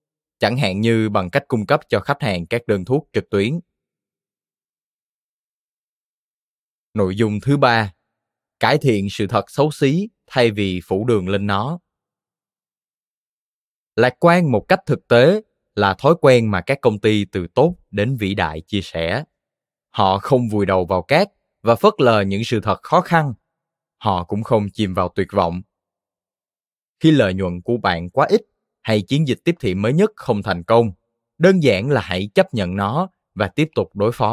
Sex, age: male, 20-39